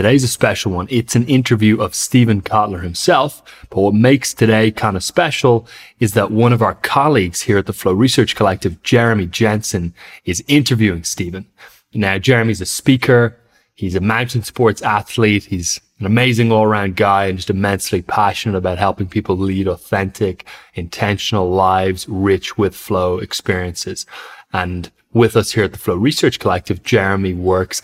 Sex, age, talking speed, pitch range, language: male, 30-49, 160 wpm, 95-115 Hz, English